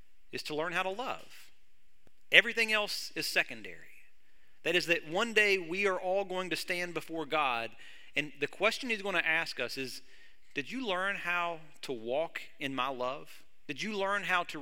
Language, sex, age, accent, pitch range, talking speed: English, male, 40-59, American, 145-190 Hz, 190 wpm